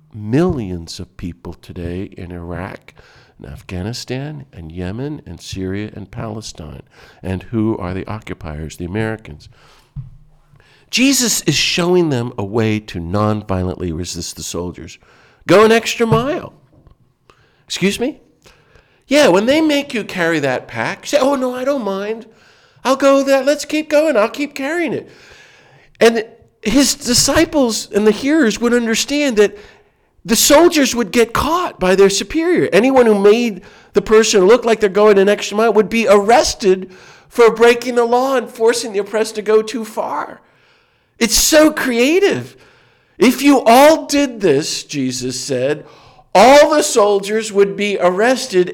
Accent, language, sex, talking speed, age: American, English, male, 150 wpm, 50-69